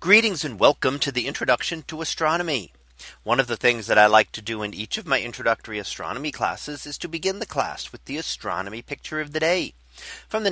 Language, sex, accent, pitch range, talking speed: English, male, American, 115-150 Hz, 215 wpm